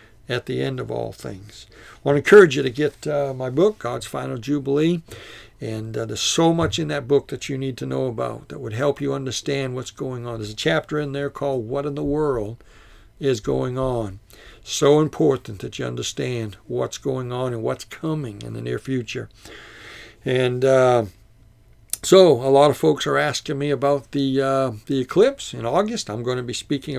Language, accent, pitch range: English, American, 125-150 Hz